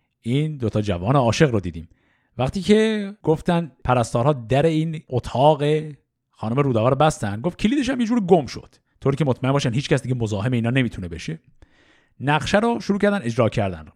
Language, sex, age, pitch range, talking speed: Persian, male, 50-69, 120-180 Hz, 175 wpm